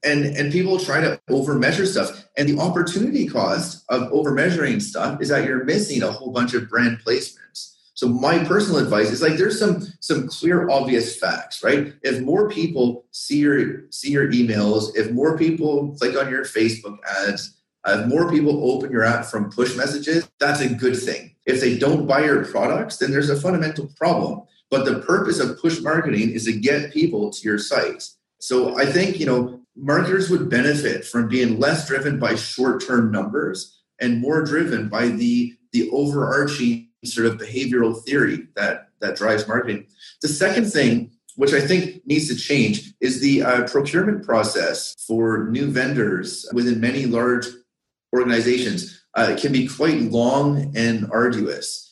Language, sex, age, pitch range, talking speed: English, male, 30-49, 120-160 Hz, 175 wpm